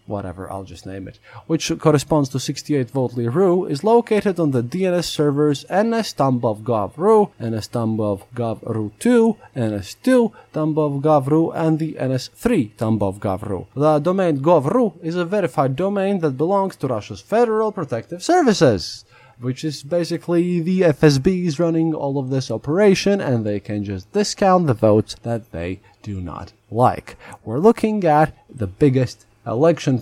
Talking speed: 140 wpm